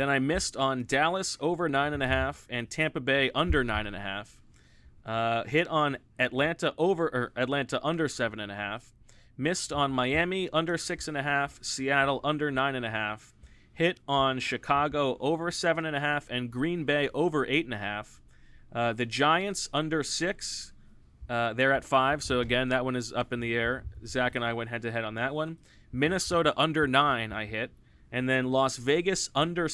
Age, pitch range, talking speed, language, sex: 30-49, 115-150 Hz, 195 wpm, English, male